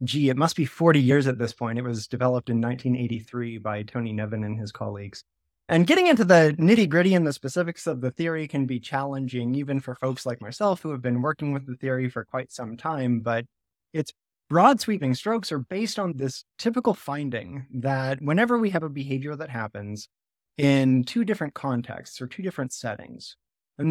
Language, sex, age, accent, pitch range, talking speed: English, male, 20-39, American, 120-155 Hz, 200 wpm